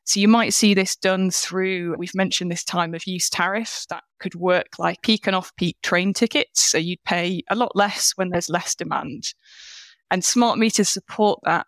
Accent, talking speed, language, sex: British, 195 wpm, English, female